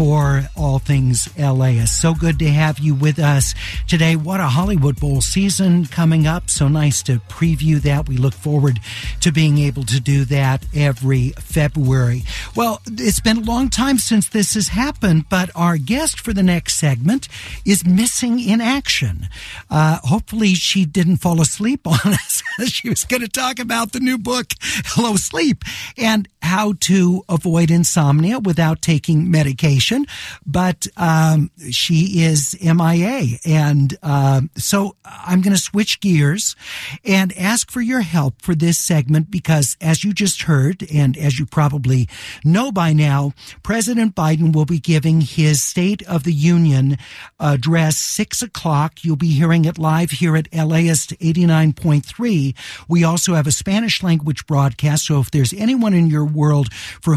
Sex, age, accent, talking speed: male, 60-79, American, 160 wpm